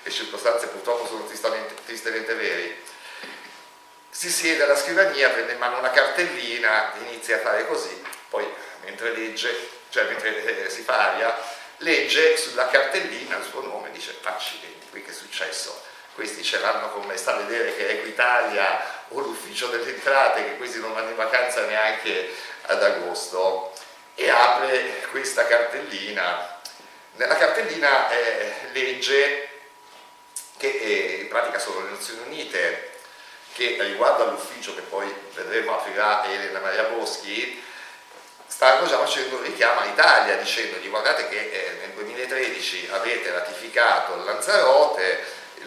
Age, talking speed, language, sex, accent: 50-69, 135 wpm, Italian, male, native